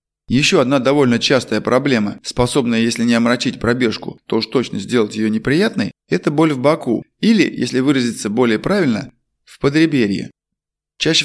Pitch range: 120-155 Hz